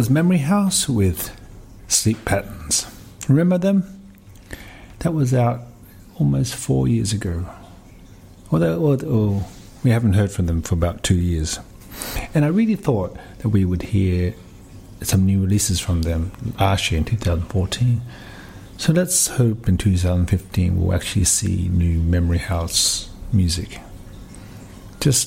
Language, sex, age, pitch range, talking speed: English, male, 60-79, 90-110 Hz, 130 wpm